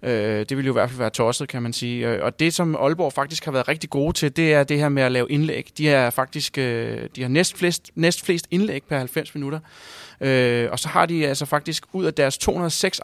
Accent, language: native, Danish